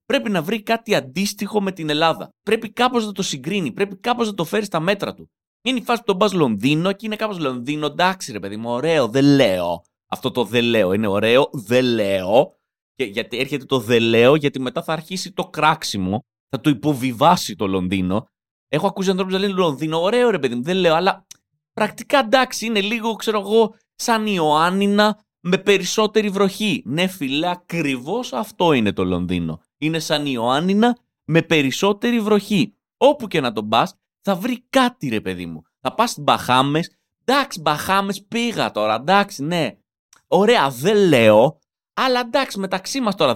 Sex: male